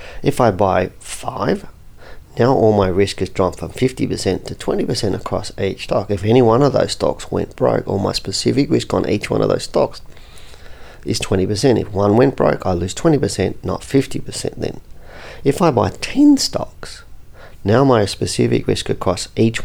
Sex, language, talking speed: male, English, 175 wpm